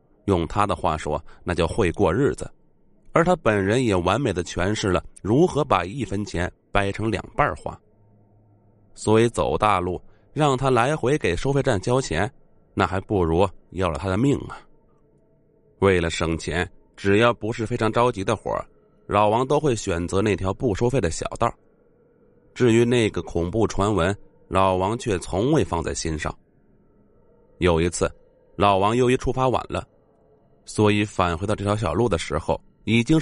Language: Chinese